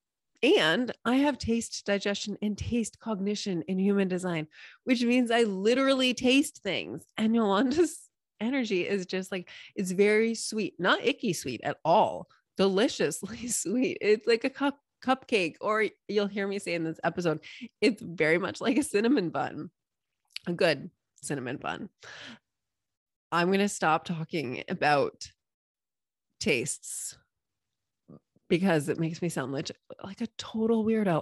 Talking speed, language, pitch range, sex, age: 140 wpm, English, 170-230 Hz, female, 20-39